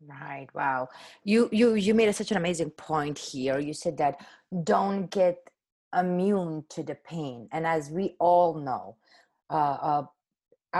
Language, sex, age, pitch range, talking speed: English, female, 30-49, 160-185 Hz, 155 wpm